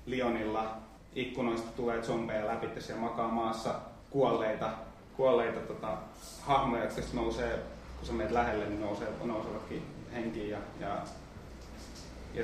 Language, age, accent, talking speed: Finnish, 30-49, native, 105 wpm